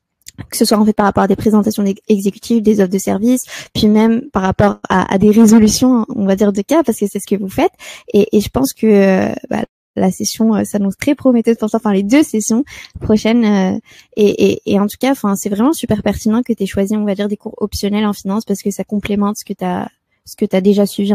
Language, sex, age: French, female, 20-39